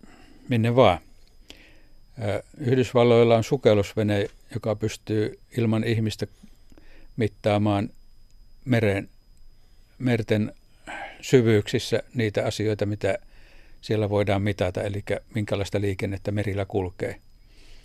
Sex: male